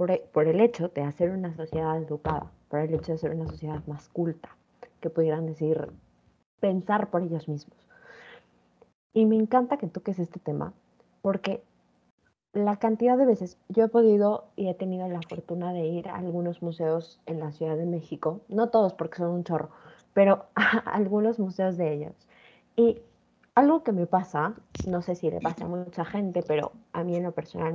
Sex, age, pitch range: female, 20-39, 165-225 Hz